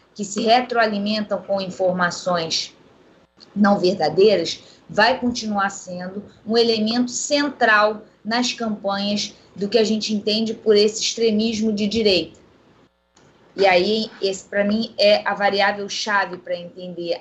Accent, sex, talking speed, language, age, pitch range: Brazilian, female, 120 wpm, Portuguese, 20-39, 190-235 Hz